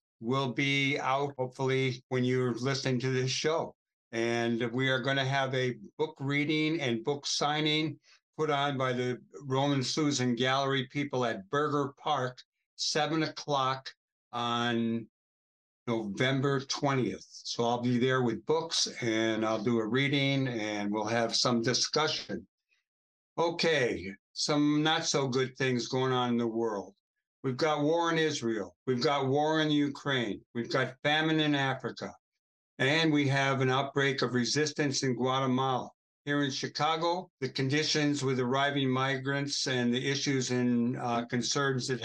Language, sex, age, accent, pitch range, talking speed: English, male, 60-79, American, 125-150 Hz, 145 wpm